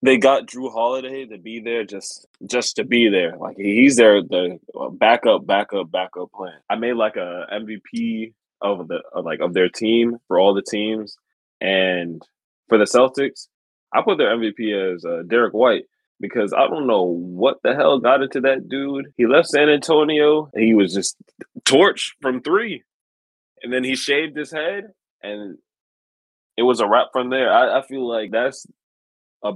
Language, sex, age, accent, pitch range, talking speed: English, male, 20-39, American, 100-120 Hz, 180 wpm